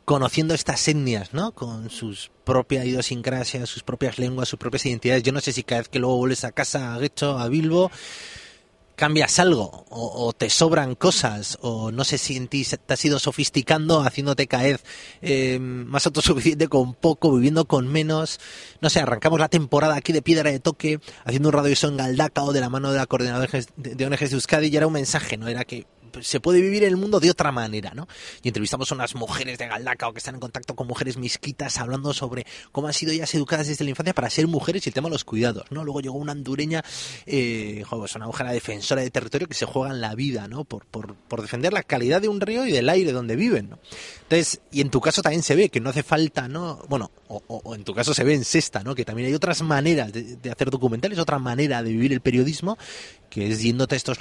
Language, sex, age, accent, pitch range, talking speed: Spanish, male, 30-49, Spanish, 125-155 Hz, 235 wpm